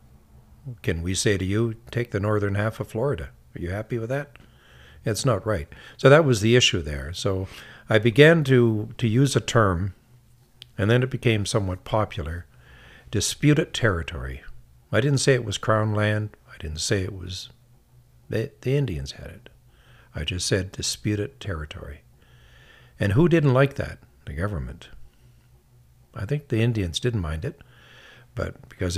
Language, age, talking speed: English, 60-79, 160 wpm